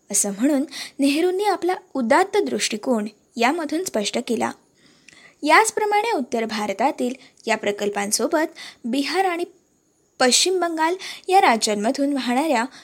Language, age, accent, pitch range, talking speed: Marathi, 20-39, native, 230-330 Hz, 100 wpm